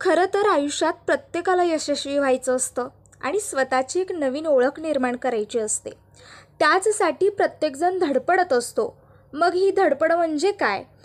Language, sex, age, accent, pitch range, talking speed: Marathi, female, 20-39, native, 280-375 Hz, 130 wpm